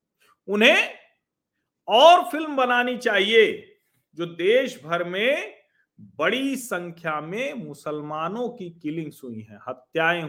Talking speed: 105 wpm